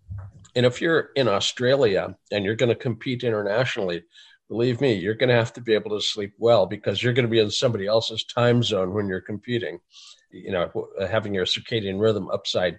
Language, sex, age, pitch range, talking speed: English, male, 50-69, 105-125 Hz, 200 wpm